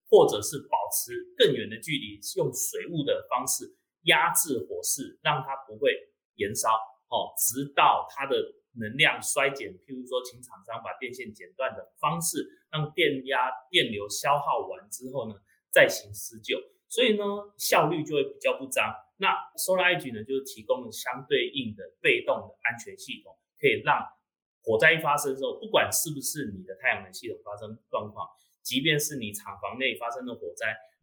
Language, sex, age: Chinese, male, 30-49